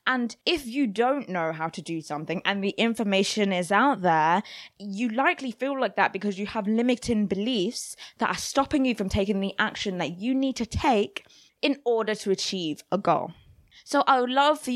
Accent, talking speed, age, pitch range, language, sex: British, 200 wpm, 20-39, 190-245 Hz, English, female